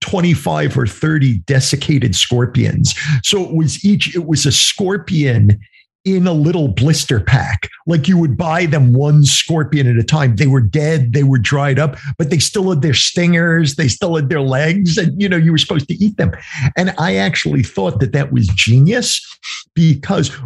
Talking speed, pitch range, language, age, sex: 190 wpm, 140-185 Hz, English, 50-69, male